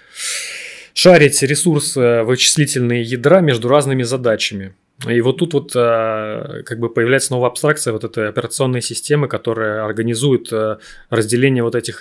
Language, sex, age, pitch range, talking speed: Russian, male, 20-39, 110-135 Hz, 125 wpm